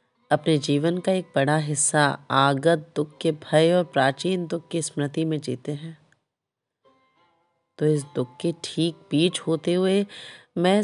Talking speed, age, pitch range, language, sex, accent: 150 wpm, 30-49, 145-185 Hz, Hindi, female, native